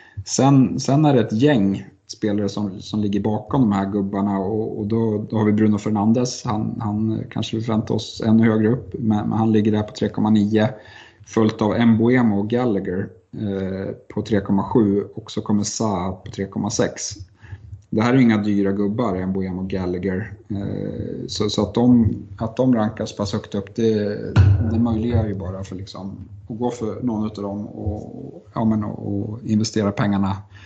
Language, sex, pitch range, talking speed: Swedish, male, 100-115 Hz, 175 wpm